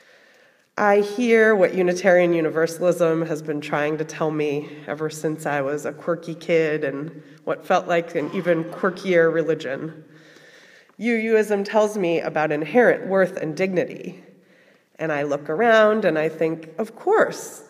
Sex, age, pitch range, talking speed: female, 30-49, 155-200 Hz, 145 wpm